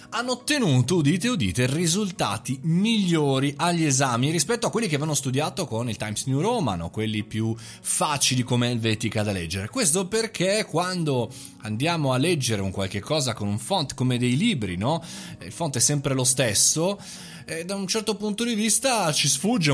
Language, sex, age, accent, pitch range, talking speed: Italian, male, 20-39, native, 110-155 Hz, 175 wpm